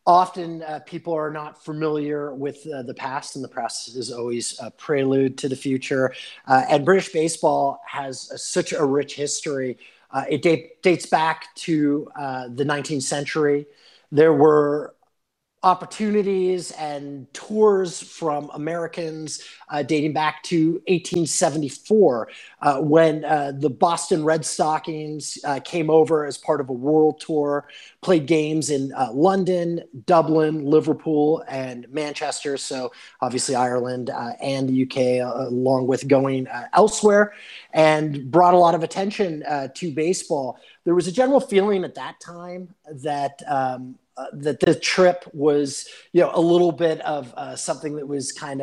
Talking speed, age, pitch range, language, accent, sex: 155 wpm, 30-49, 145-175 Hz, English, American, male